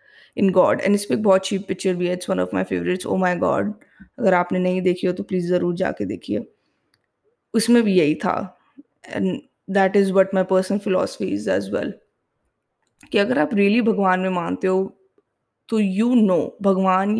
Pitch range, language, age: 180-205 Hz, English, 20-39